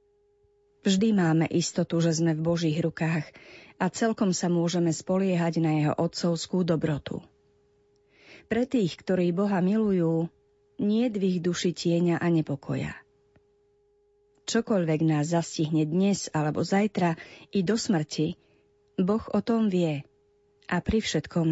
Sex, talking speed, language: female, 125 wpm, Slovak